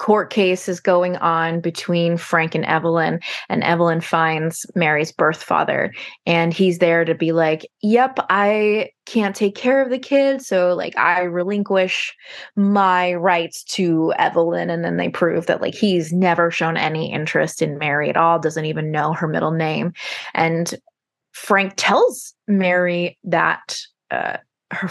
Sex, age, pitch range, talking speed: female, 20-39, 165-195 Hz, 155 wpm